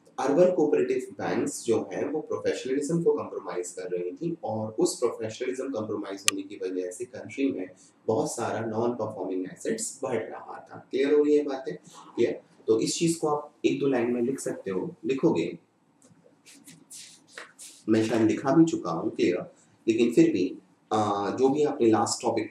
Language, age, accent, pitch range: Hindi, 30-49, native, 110-165 Hz